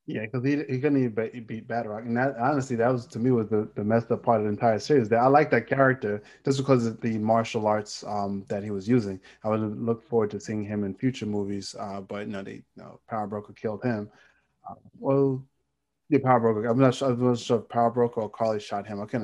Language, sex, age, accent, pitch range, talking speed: English, male, 20-39, American, 105-125 Hz, 270 wpm